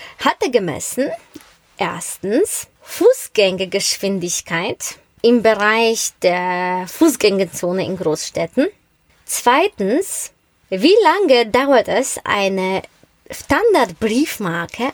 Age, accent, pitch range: 20-39, German, 220-290 Hz